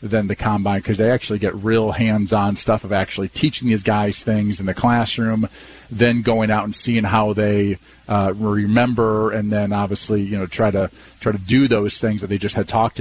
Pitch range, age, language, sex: 105-120 Hz, 40-59, English, male